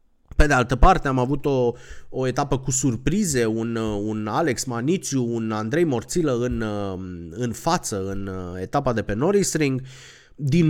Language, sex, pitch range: Romanian, male, 110-155 Hz